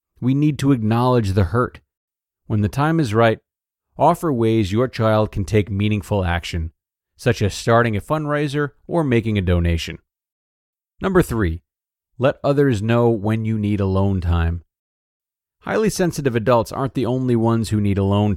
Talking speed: 155 wpm